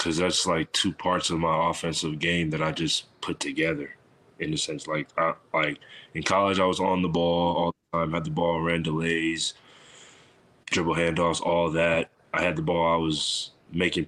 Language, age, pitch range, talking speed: English, 20-39, 80-85 Hz, 200 wpm